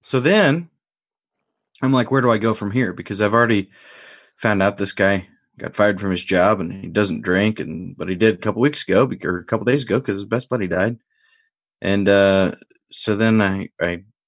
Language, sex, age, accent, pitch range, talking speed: English, male, 20-39, American, 95-120 Hz, 210 wpm